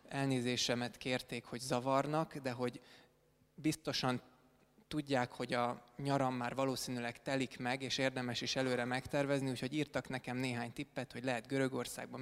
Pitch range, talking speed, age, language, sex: 125-145 Hz, 135 wpm, 20-39, Hungarian, male